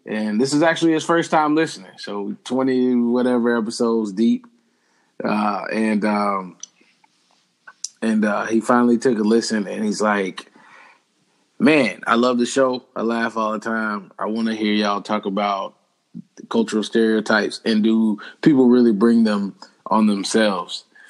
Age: 20-39